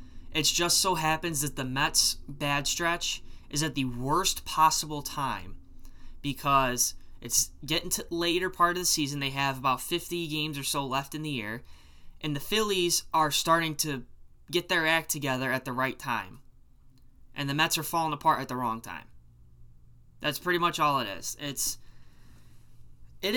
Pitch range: 125-165 Hz